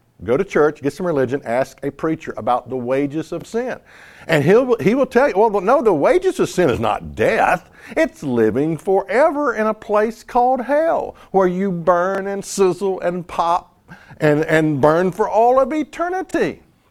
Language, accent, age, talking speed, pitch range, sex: English, American, 50-69, 180 wpm, 135-215 Hz, male